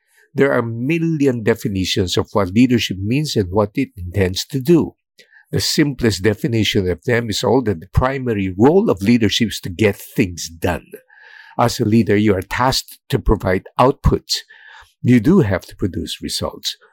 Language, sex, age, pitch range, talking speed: English, male, 50-69, 100-130 Hz, 170 wpm